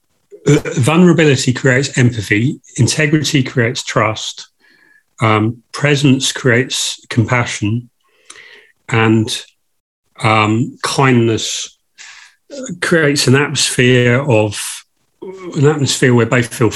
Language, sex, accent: English, male, British